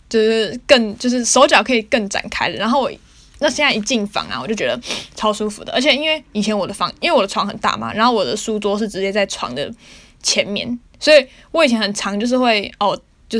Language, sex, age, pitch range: Chinese, female, 10-29, 200-240 Hz